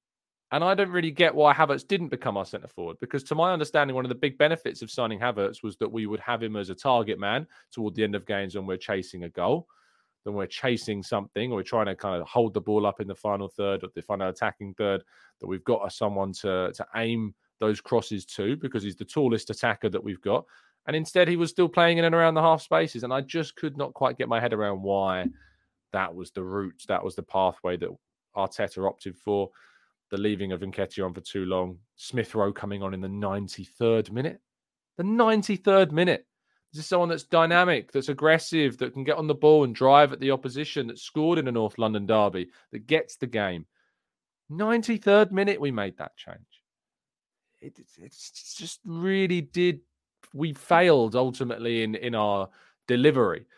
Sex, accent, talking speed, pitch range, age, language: male, British, 210 wpm, 100-155 Hz, 20-39, English